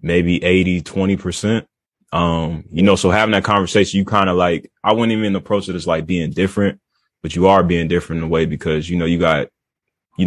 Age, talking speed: 20-39, 220 wpm